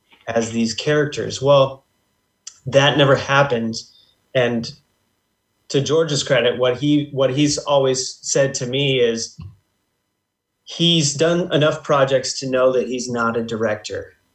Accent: American